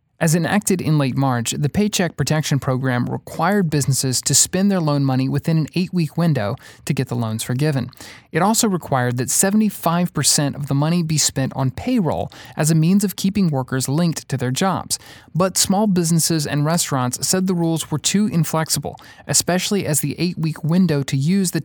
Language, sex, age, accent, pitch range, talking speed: English, male, 30-49, American, 130-170 Hz, 185 wpm